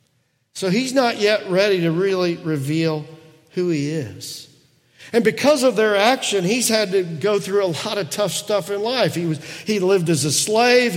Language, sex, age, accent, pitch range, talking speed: English, male, 50-69, American, 150-205 Hz, 190 wpm